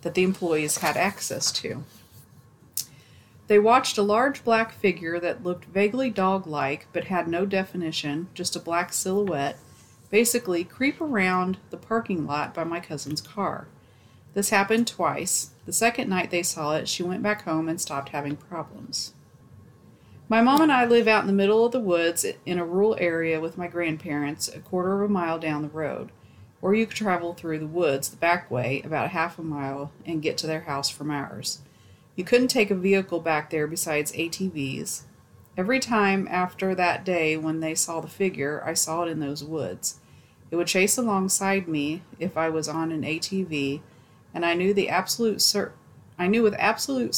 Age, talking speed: 40-59, 185 wpm